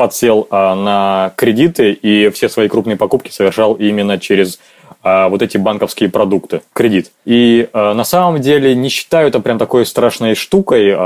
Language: Russian